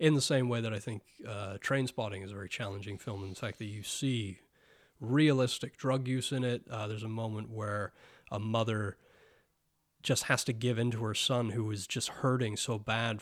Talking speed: 215 wpm